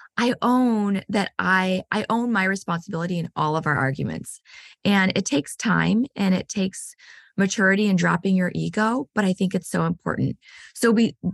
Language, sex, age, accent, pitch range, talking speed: English, female, 20-39, American, 180-225 Hz, 175 wpm